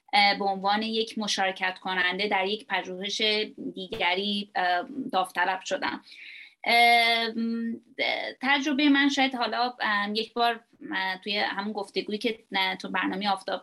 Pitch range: 195-245 Hz